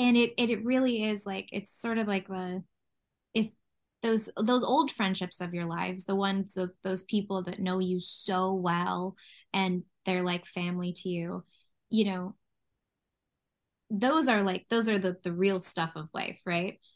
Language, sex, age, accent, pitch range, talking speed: English, female, 10-29, American, 185-230 Hz, 175 wpm